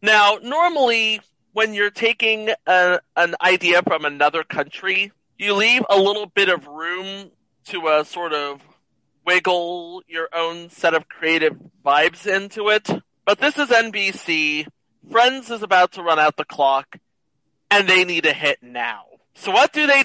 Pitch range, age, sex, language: 160-210 Hz, 40-59, male, English